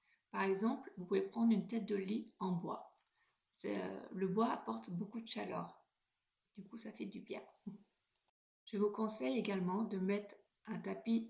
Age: 40-59